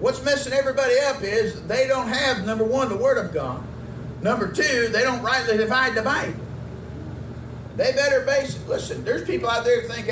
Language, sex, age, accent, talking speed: English, male, 50-69, American, 195 wpm